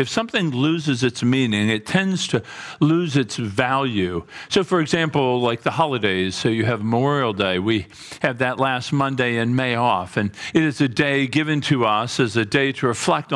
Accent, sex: American, male